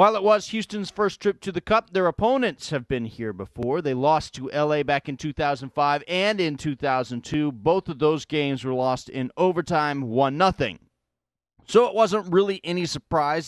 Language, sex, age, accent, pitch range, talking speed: English, male, 30-49, American, 135-185 Hz, 180 wpm